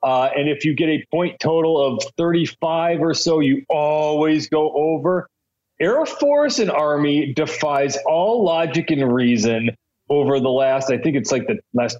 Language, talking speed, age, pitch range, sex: English, 170 wpm, 40-59, 135-175 Hz, male